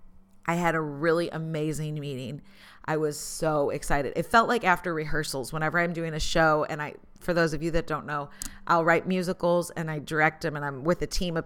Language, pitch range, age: English, 155-195 Hz, 30-49